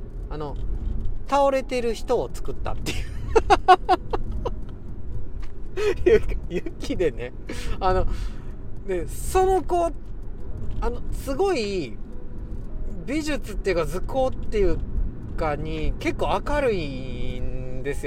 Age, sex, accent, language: 40-59, male, native, Japanese